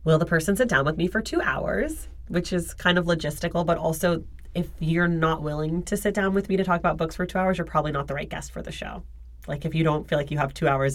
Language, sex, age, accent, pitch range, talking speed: English, female, 30-49, American, 145-175 Hz, 285 wpm